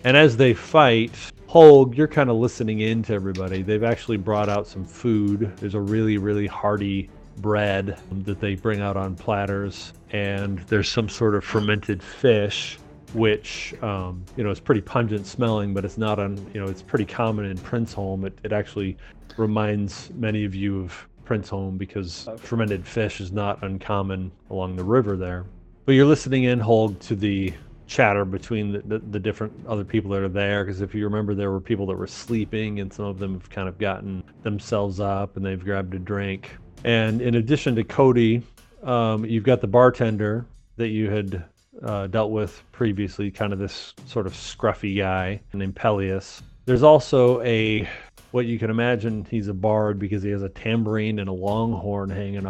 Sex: male